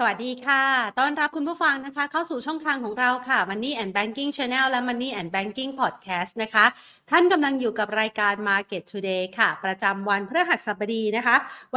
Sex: female